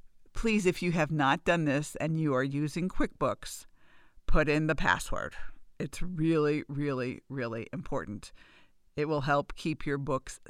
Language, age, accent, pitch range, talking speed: English, 50-69, American, 135-165 Hz, 155 wpm